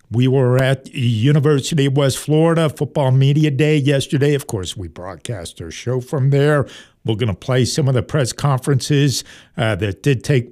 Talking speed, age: 185 wpm, 60-79